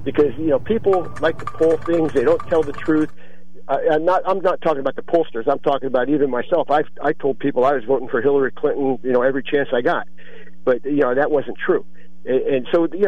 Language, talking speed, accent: English, 235 wpm, American